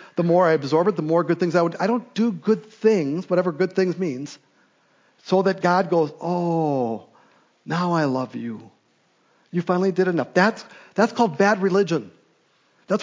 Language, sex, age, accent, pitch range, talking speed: English, male, 50-69, American, 165-215 Hz, 180 wpm